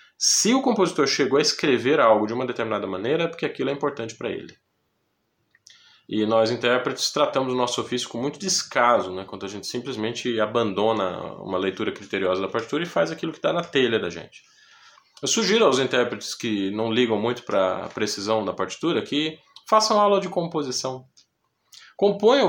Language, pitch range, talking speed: Portuguese, 115-190 Hz, 180 wpm